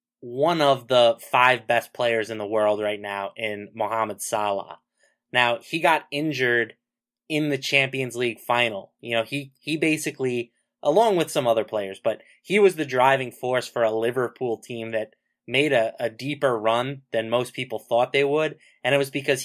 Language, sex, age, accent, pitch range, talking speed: English, male, 20-39, American, 115-145 Hz, 180 wpm